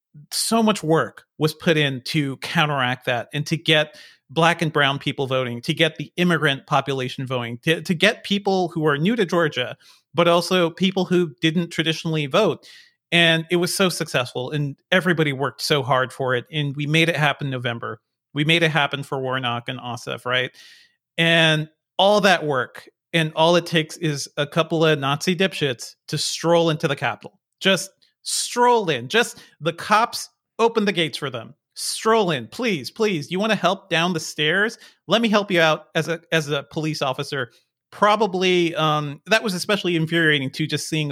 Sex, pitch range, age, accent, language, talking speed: male, 140-180 Hz, 40-59, American, English, 185 wpm